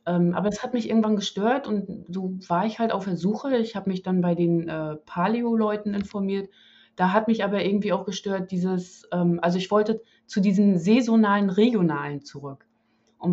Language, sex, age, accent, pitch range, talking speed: German, female, 20-39, German, 170-220 Hz, 185 wpm